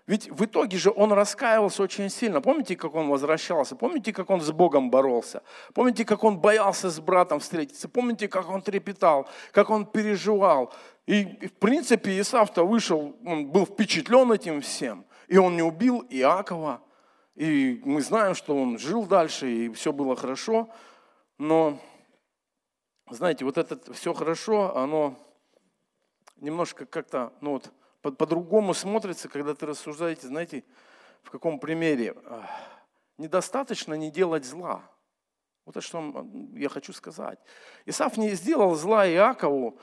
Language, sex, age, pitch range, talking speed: Russian, male, 50-69, 155-215 Hz, 140 wpm